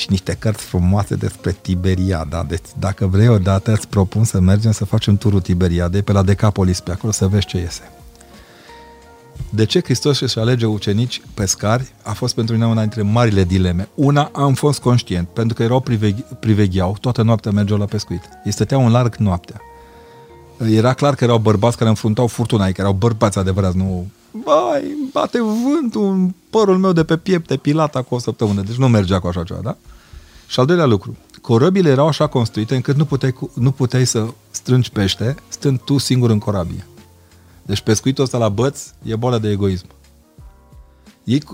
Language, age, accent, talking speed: Romanian, 40-59, native, 180 wpm